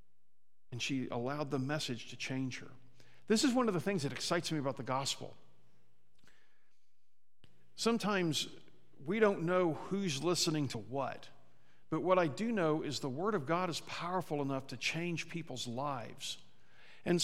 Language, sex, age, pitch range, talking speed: English, male, 50-69, 140-195 Hz, 160 wpm